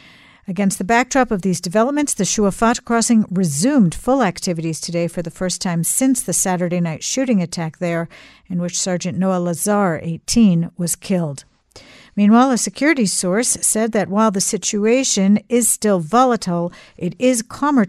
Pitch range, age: 175-230 Hz, 50-69